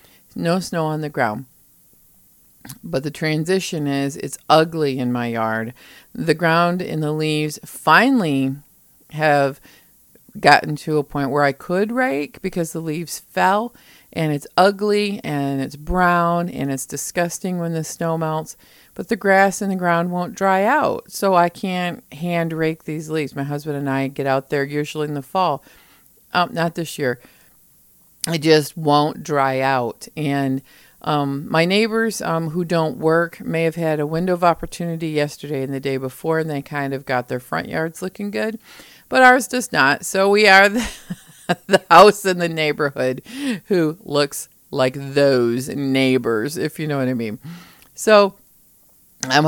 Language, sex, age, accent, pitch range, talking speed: English, female, 50-69, American, 140-180 Hz, 165 wpm